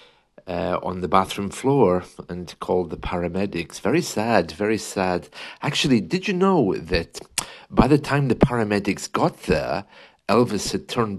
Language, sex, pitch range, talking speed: English, male, 90-125 Hz, 150 wpm